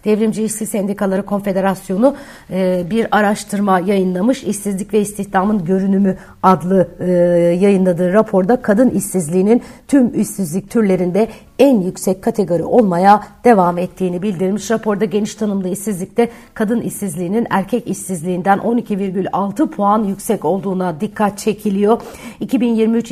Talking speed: 110 wpm